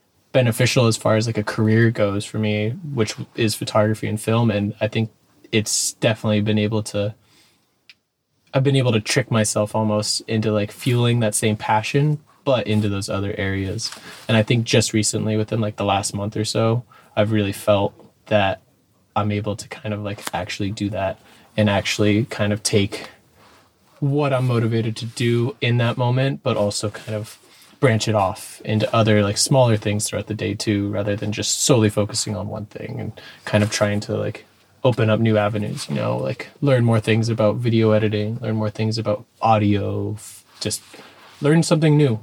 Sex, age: male, 20-39